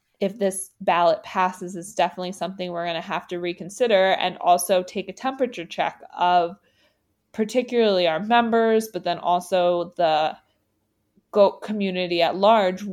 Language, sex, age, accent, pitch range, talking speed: English, female, 20-39, American, 170-200 Hz, 145 wpm